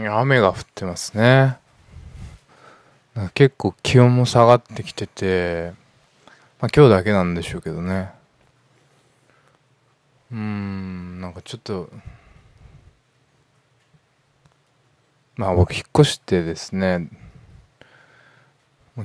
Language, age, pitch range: Japanese, 20-39, 90-130 Hz